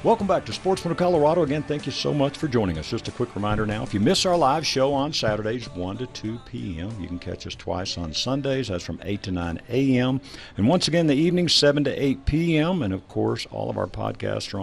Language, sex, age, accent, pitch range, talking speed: English, male, 60-79, American, 100-145 Hz, 250 wpm